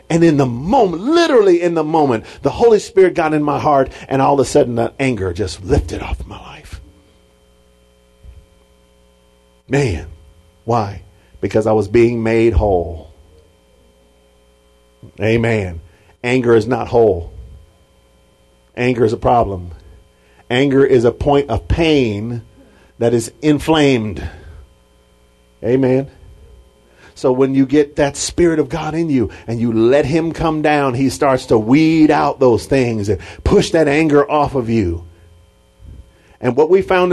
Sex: male